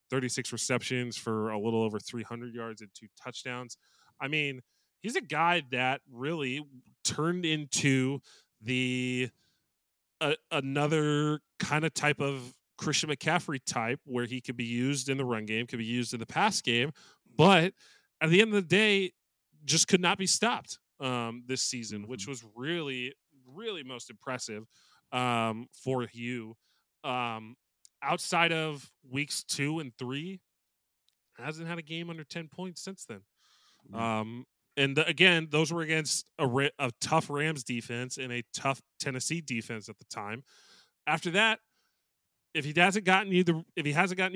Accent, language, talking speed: American, English, 160 wpm